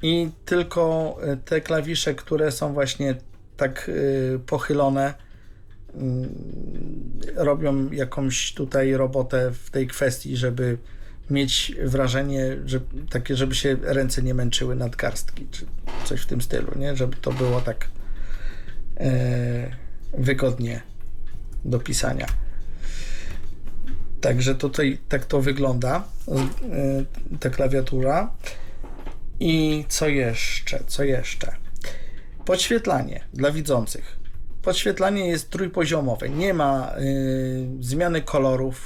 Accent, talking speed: native, 95 wpm